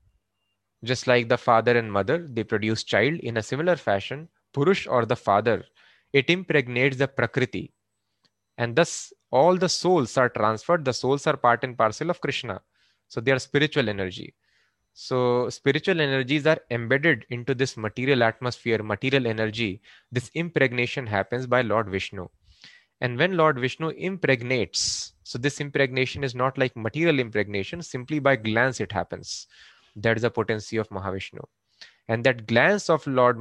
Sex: male